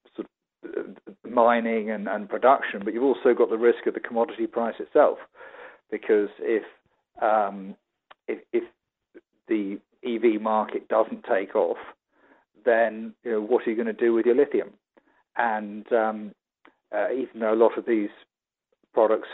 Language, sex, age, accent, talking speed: English, male, 40-59, British, 145 wpm